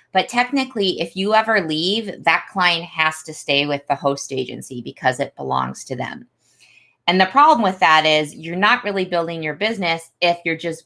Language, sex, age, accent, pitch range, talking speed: English, female, 20-39, American, 145-195 Hz, 195 wpm